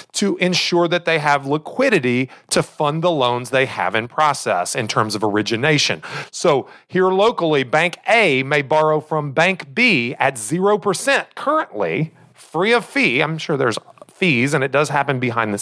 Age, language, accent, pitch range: 30-49, English, American, 135-190 Hz